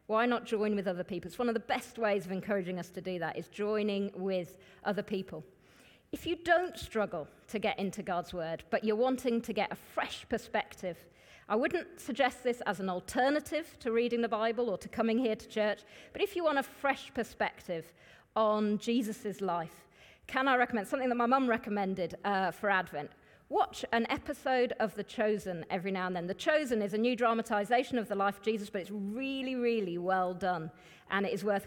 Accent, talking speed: British, 205 wpm